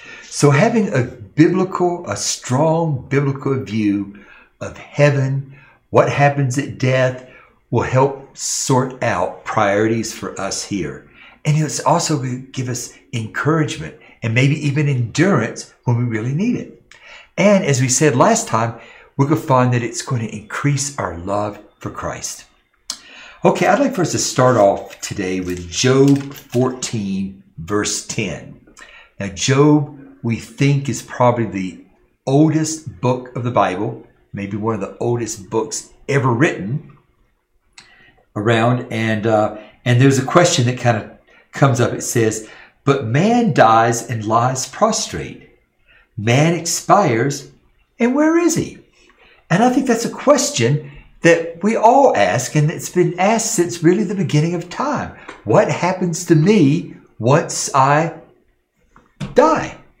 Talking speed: 145 wpm